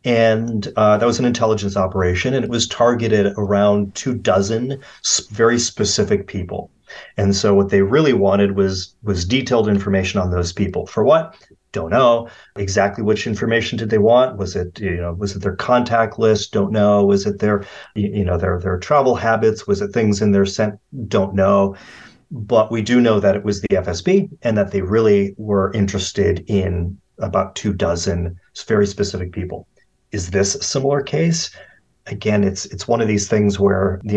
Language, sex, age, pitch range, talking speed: English, male, 30-49, 95-115 Hz, 185 wpm